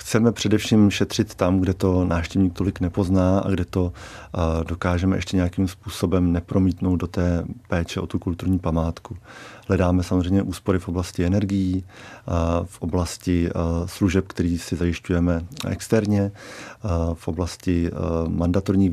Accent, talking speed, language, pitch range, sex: native, 125 wpm, Czech, 90-105 Hz, male